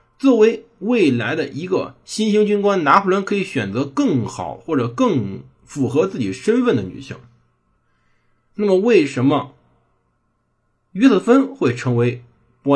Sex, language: male, Chinese